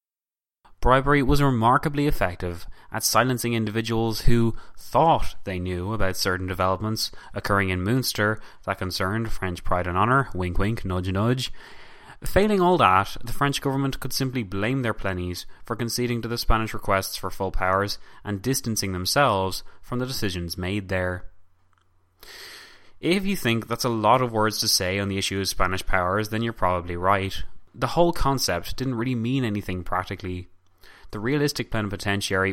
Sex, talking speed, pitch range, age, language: male, 160 wpm, 95-120 Hz, 20-39, English